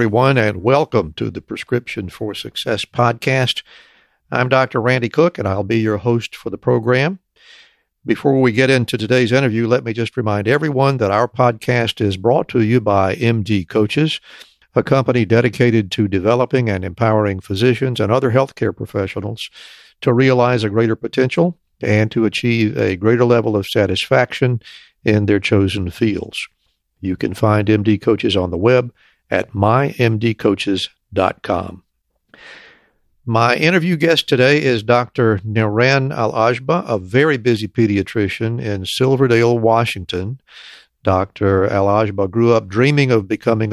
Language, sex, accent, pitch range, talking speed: English, male, American, 105-125 Hz, 140 wpm